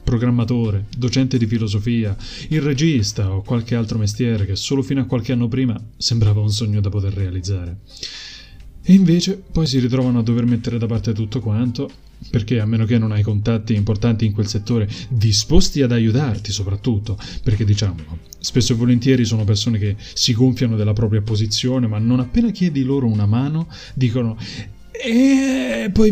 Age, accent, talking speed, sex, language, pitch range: 30-49, native, 170 wpm, male, Italian, 105-135 Hz